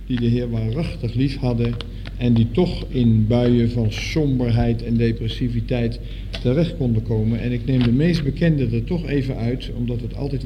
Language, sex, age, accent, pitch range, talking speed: Dutch, male, 50-69, Dutch, 115-145 Hz, 180 wpm